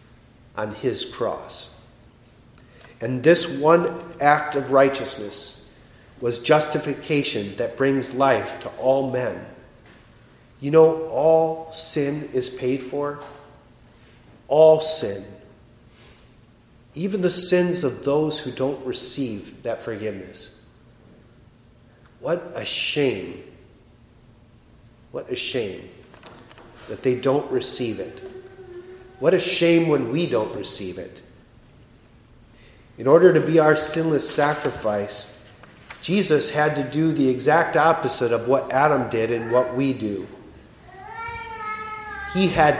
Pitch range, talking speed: 120-160 Hz, 110 wpm